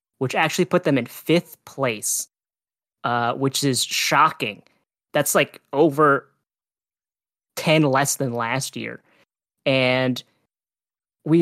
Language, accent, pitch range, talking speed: English, American, 120-145 Hz, 110 wpm